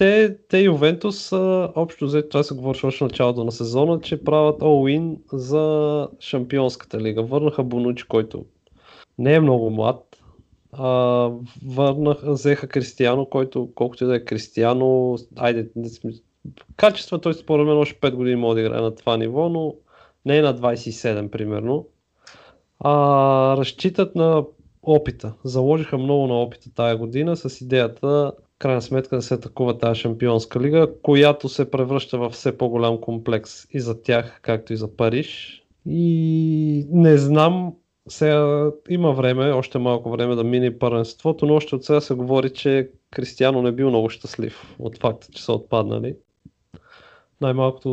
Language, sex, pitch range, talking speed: Bulgarian, male, 120-150 Hz, 150 wpm